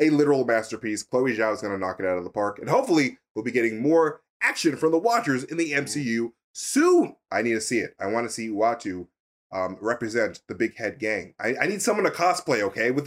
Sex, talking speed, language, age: male, 230 wpm, English, 30-49